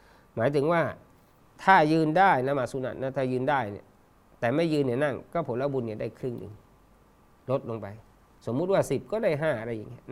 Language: Thai